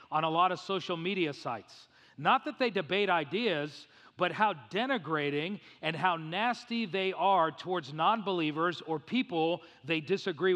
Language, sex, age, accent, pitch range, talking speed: English, male, 40-59, American, 160-200 Hz, 150 wpm